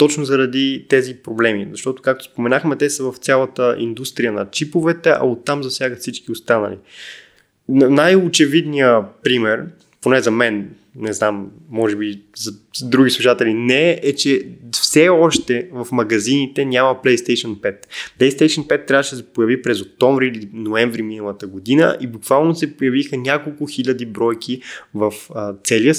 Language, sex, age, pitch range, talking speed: Bulgarian, male, 20-39, 115-145 Hz, 150 wpm